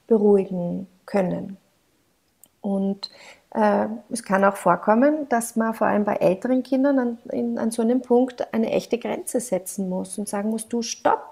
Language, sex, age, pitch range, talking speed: German, female, 40-59, 200-250 Hz, 165 wpm